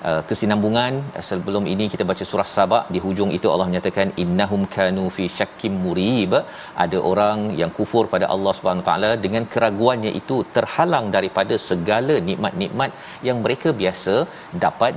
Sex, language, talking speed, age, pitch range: male, Malayalam, 150 wpm, 40-59, 105-135 Hz